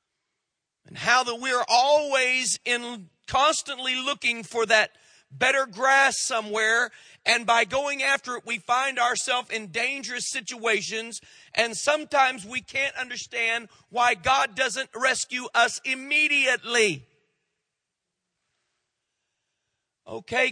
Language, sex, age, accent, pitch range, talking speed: English, male, 50-69, American, 195-255 Hz, 105 wpm